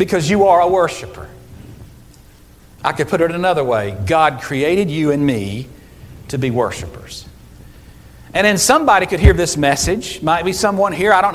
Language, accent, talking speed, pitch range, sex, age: English, American, 170 wpm, 125-185 Hz, male, 50-69